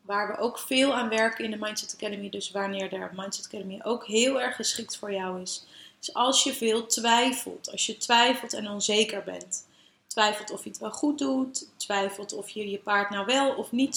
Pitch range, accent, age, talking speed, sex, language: 205-245 Hz, Dutch, 30-49, 210 wpm, female, Dutch